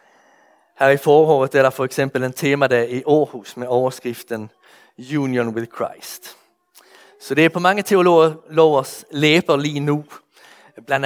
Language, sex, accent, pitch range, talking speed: Danish, male, Swedish, 130-170 Hz, 150 wpm